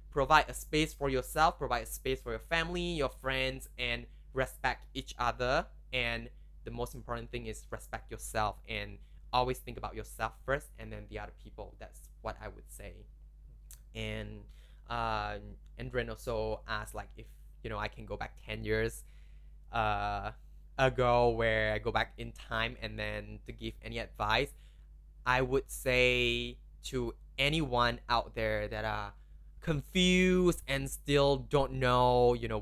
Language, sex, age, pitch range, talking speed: English, male, 10-29, 105-130 Hz, 160 wpm